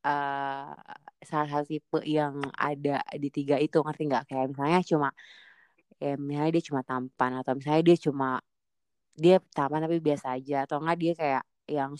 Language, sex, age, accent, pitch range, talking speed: Indonesian, female, 20-39, native, 145-180 Hz, 165 wpm